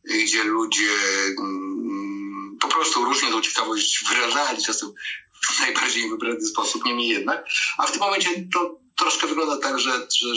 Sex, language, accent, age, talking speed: male, Polish, native, 50-69, 150 wpm